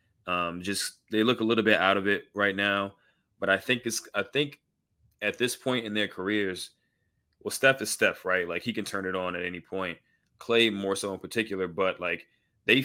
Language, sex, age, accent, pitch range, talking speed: English, male, 20-39, American, 95-110 Hz, 215 wpm